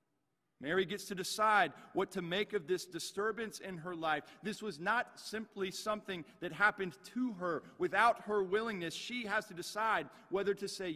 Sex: male